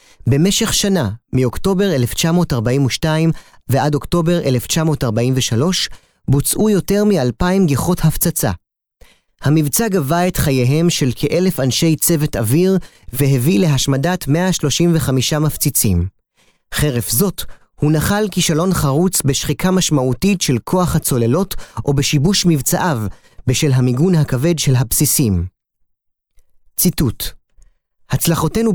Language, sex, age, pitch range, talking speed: Hebrew, male, 30-49, 125-175 Hz, 95 wpm